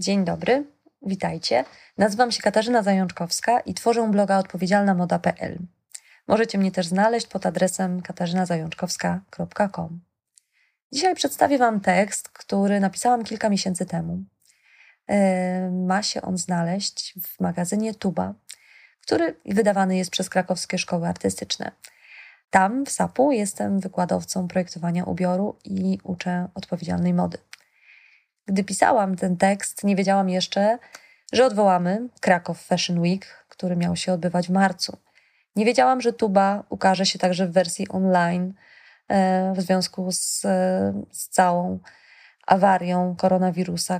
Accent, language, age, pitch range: native, Polish, 20-39, 180-205 Hz